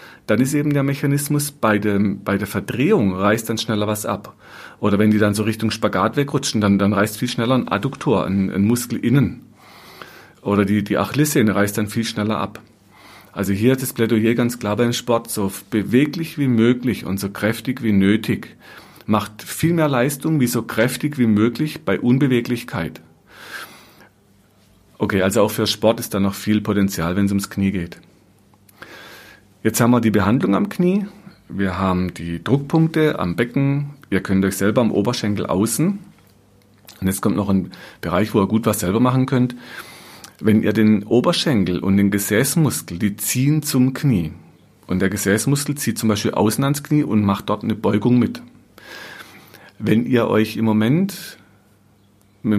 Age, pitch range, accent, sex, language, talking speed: 40-59, 100-125 Hz, German, male, German, 175 wpm